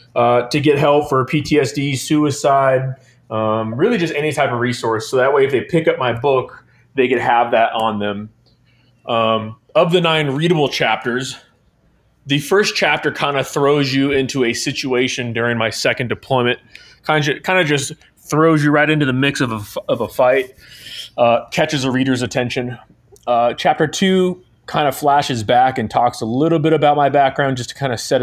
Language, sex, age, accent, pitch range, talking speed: English, male, 30-49, American, 115-140 Hz, 190 wpm